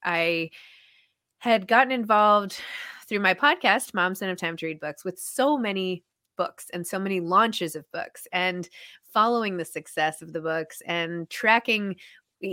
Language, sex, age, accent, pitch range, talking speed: English, female, 20-39, American, 170-220 Hz, 160 wpm